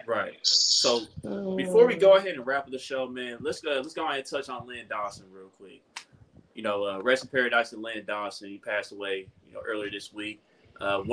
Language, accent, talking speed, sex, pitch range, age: English, American, 225 wpm, male, 105-135 Hz, 20-39